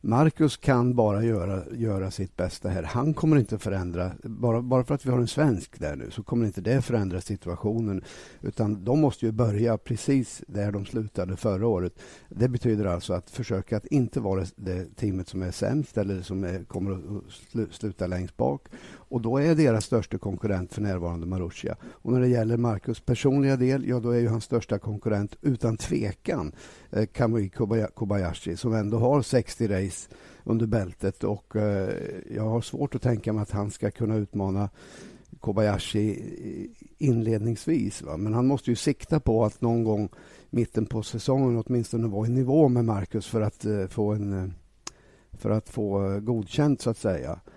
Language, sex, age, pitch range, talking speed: Swedish, male, 60-79, 100-120 Hz, 180 wpm